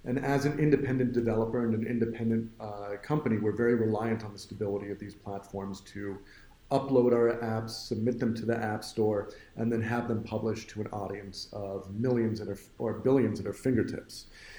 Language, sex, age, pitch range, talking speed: English, male, 40-59, 105-125 Hz, 195 wpm